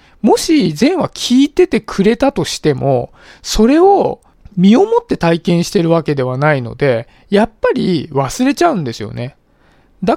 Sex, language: male, Japanese